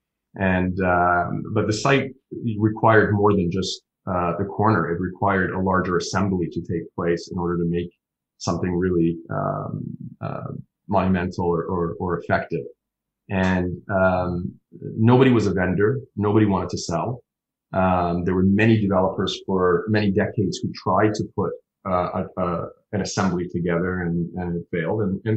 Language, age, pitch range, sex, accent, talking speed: English, 30-49, 85-100 Hz, male, Canadian, 160 wpm